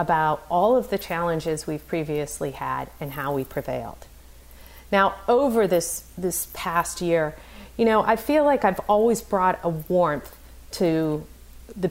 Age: 40-59